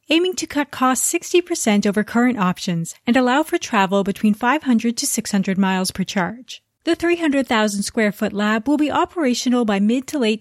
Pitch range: 200-275 Hz